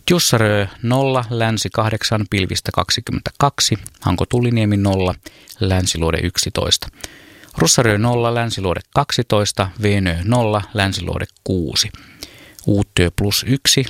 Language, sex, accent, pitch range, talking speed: Finnish, male, native, 95-125 Hz, 90 wpm